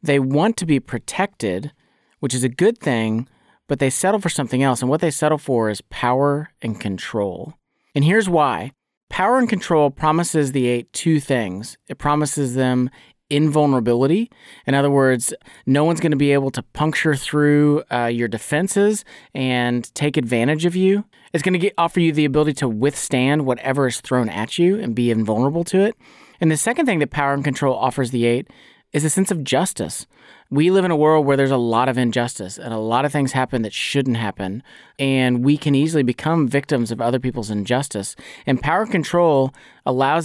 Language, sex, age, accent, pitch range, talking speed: English, male, 30-49, American, 125-155 Hz, 190 wpm